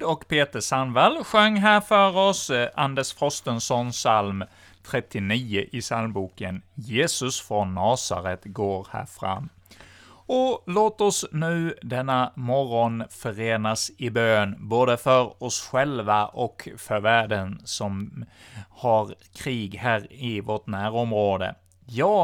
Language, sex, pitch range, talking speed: Swedish, male, 105-135 Hz, 115 wpm